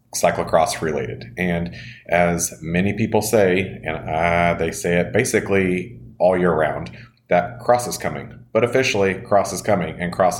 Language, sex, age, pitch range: English, male, 30-49, 85-105 Hz